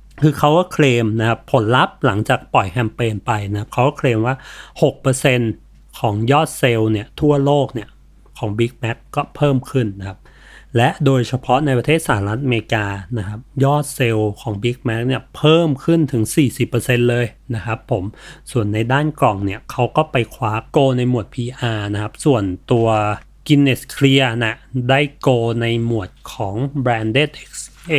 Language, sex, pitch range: Thai, male, 110-145 Hz